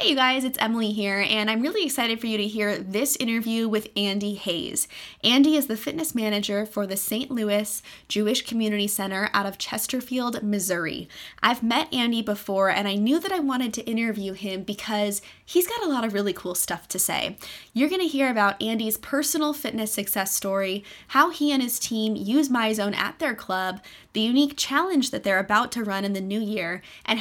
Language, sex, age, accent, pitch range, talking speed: English, female, 20-39, American, 200-245 Hz, 200 wpm